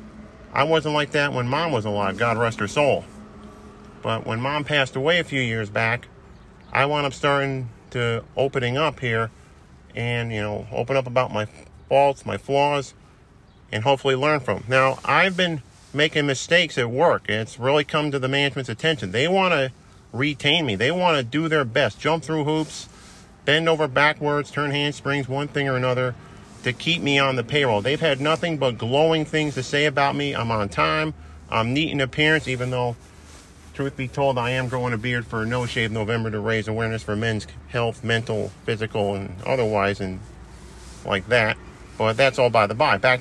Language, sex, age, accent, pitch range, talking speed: English, male, 40-59, American, 110-145 Hz, 190 wpm